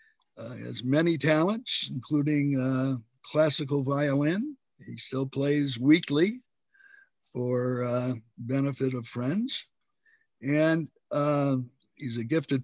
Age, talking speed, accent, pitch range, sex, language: 60-79, 105 wpm, American, 125-155 Hz, male, English